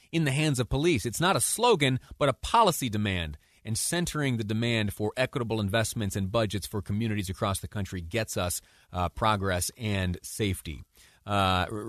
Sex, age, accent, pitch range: male, 30-49, American, 100-125 Hz